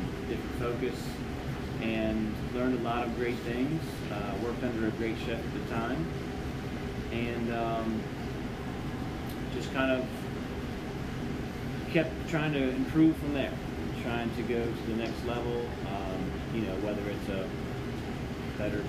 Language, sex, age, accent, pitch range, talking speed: English, male, 30-49, American, 110-130 Hz, 135 wpm